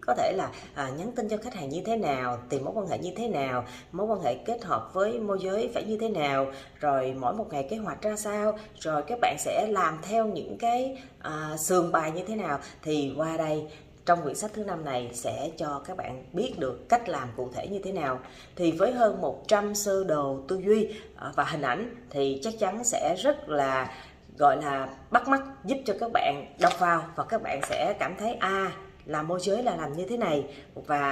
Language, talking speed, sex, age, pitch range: Vietnamese, 230 wpm, female, 20-39, 145-220 Hz